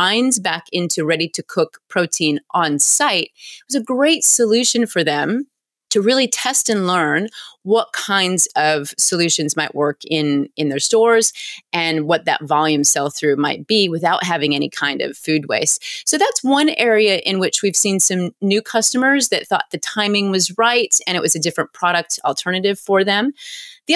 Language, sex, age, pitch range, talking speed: English, female, 30-49, 165-240 Hz, 180 wpm